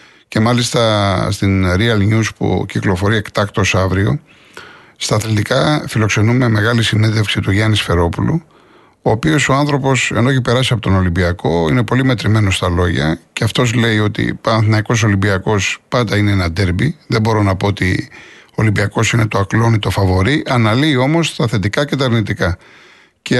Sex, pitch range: male, 105-130 Hz